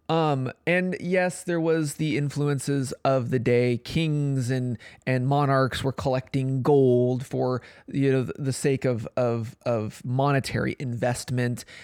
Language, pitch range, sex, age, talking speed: English, 125-145 Hz, male, 20-39, 140 wpm